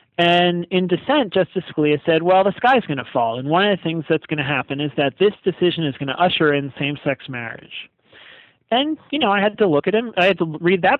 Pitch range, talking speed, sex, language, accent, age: 140-185 Hz, 250 wpm, male, English, American, 40-59